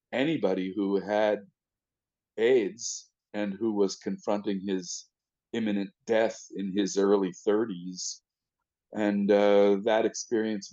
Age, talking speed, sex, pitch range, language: 50-69, 105 wpm, male, 95-115 Hz, English